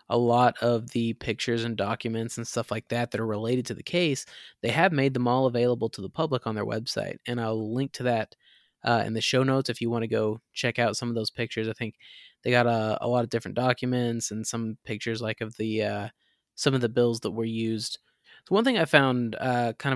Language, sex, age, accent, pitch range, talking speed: English, male, 20-39, American, 115-130 Hz, 245 wpm